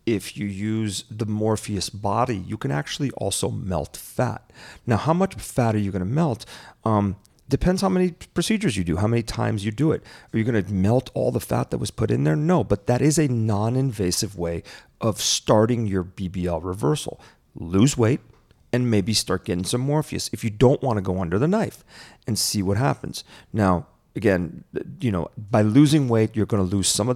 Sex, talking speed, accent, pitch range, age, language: male, 205 wpm, American, 100-125 Hz, 40-59, English